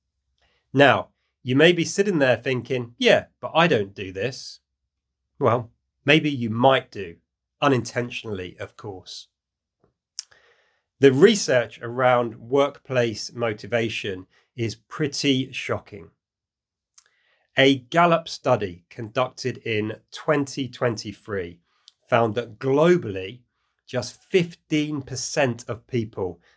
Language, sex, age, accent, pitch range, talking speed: English, male, 30-49, British, 110-140 Hz, 95 wpm